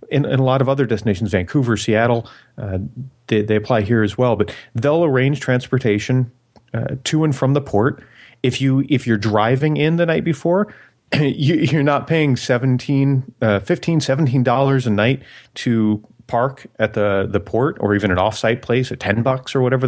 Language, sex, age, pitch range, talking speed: English, male, 30-49, 105-135 Hz, 185 wpm